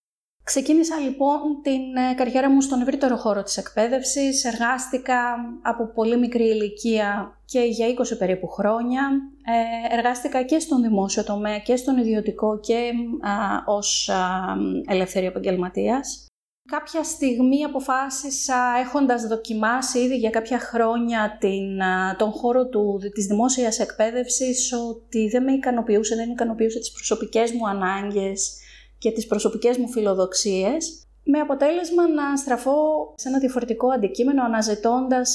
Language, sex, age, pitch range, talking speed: Greek, female, 30-49, 215-255 Hz, 130 wpm